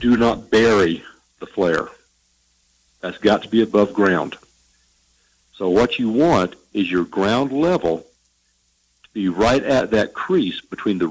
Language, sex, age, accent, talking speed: English, male, 50-69, American, 145 wpm